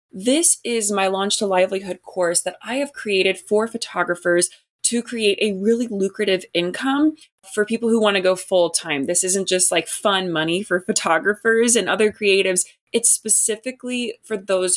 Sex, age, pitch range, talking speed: female, 20-39, 180-230 Hz, 170 wpm